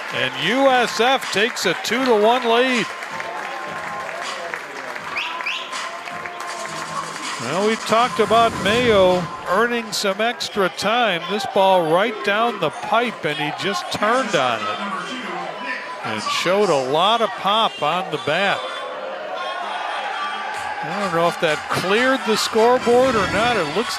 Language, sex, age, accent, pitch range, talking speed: English, male, 50-69, American, 140-210 Hz, 120 wpm